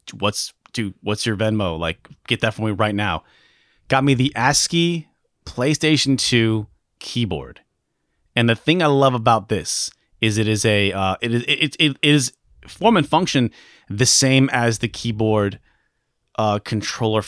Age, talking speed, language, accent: 30-49, 165 wpm, English, American